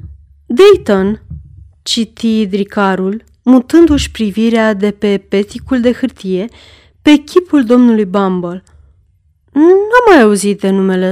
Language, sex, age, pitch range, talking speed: Romanian, female, 30-49, 185-245 Hz, 110 wpm